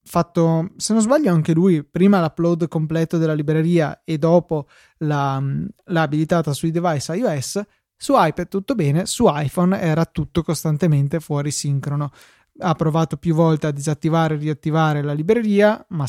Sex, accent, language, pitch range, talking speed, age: male, native, Italian, 150-175 Hz, 155 wpm, 20-39